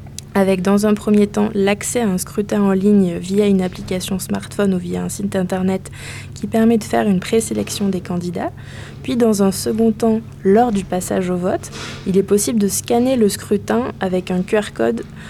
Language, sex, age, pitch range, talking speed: French, female, 20-39, 185-215 Hz, 190 wpm